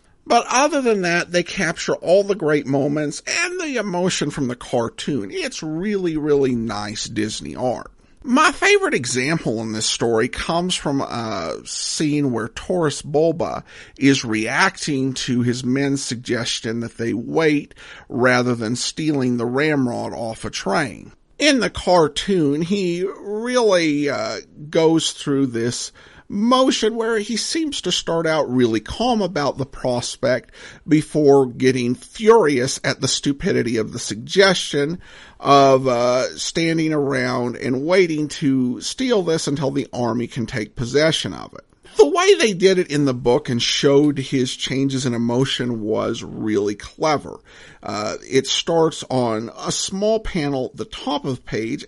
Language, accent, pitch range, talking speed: English, American, 125-180 Hz, 150 wpm